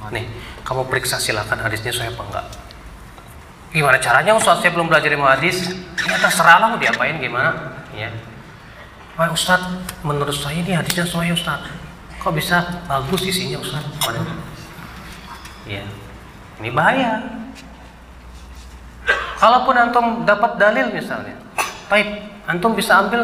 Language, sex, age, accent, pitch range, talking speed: Indonesian, male, 30-49, native, 140-165 Hz, 120 wpm